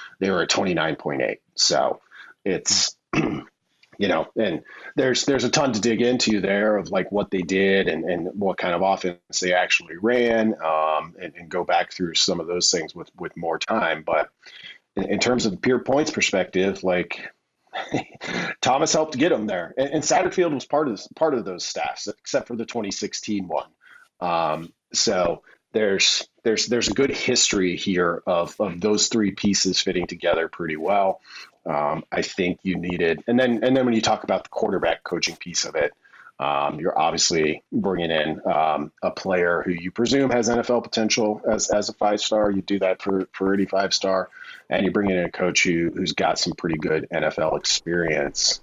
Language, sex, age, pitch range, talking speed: English, male, 40-59, 95-120 Hz, 190 wpm